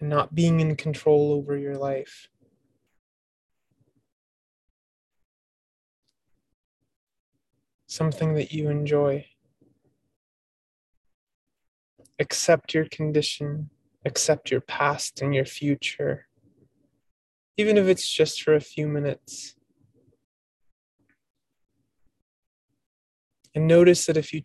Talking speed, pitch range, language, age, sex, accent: 80 wpm, 135-155 Hz, English, 20-39, male, American